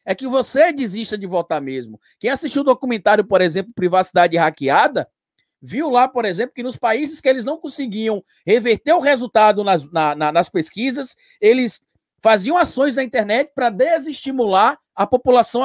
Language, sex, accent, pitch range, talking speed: Portuguese, male, Brazilian, 195-255 Hz, 170 wpm